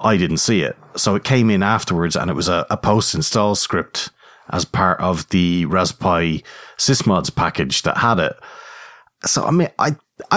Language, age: English, 30-49